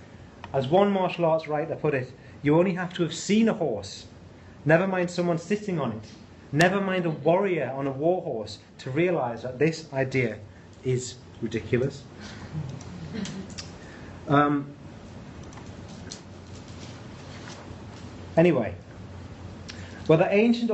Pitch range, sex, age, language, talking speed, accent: 115-160 Hz, male, 30-49, English, 115 wpm, British